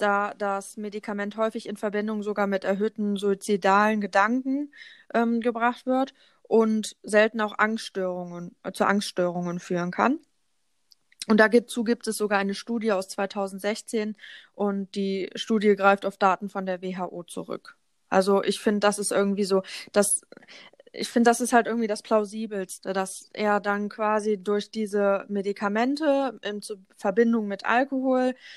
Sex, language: female, English